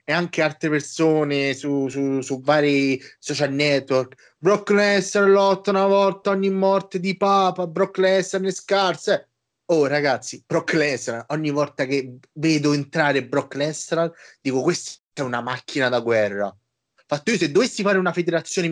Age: 20-39